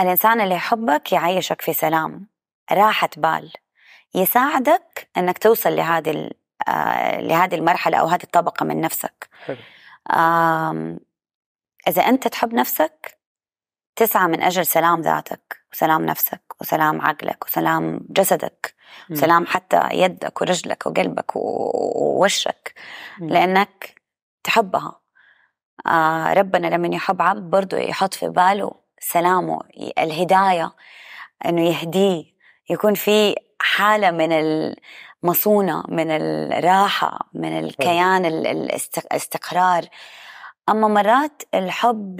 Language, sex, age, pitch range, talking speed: Arabic, female, 20-39, 160-205 Hz, 95 wpm